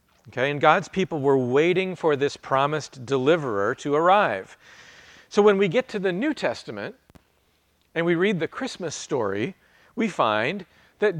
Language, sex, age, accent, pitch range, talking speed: English, male, 40-59, American, 130-175 Hz, 155 wpm